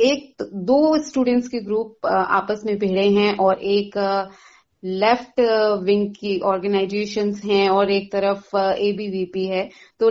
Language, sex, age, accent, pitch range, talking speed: Hindi, female, 30-49, native, 190-240 Hz, 130 wpm